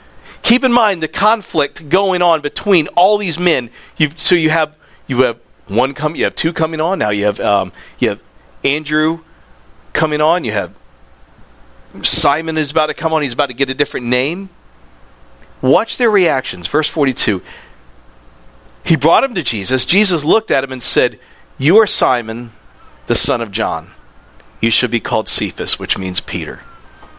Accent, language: American, English